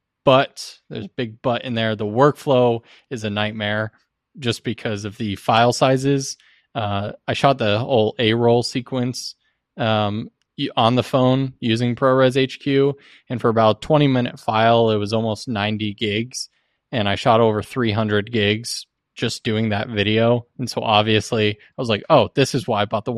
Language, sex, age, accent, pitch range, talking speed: English, male, 20-39, American, 105-125 Hz, 170 wpm